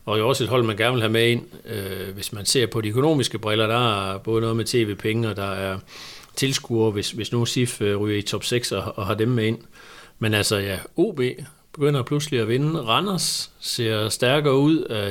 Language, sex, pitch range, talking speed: Danish, male, 110-135 Hz, 225 wpm